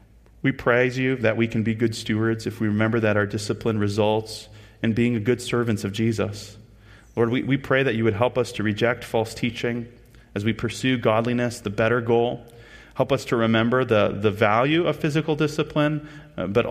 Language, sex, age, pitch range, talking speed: English, male, 30-49, 105-125 Hz, 185 wpm